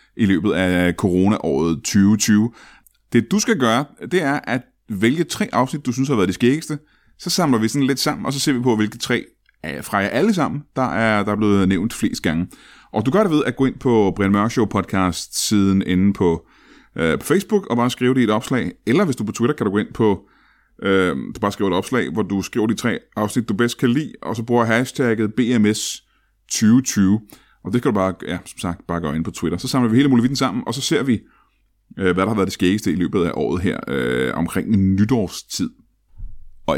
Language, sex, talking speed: Danish, male, 225 wpm